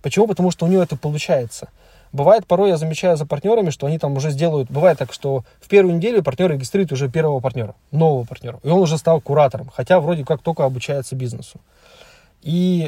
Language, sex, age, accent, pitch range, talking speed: Russian, male, 20-39, native, 135-175 Hz, 200 wpm